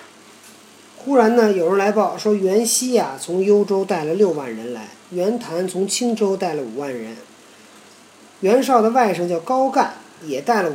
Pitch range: 170-230 Hz